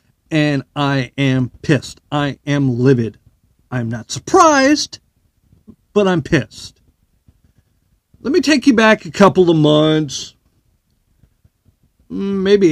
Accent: American